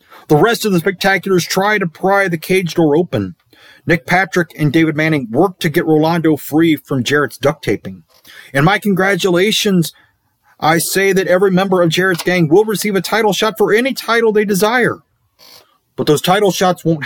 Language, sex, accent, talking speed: English, male, American, 185 wpm